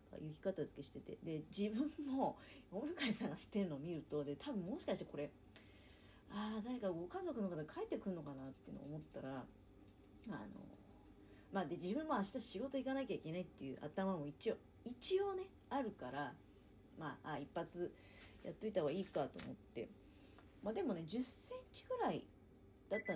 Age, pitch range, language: 40-59, 130-225 Hz, Japanese